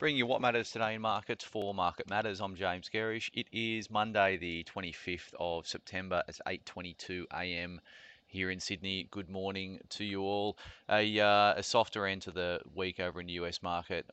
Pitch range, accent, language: 85-95 Hz, Australian, English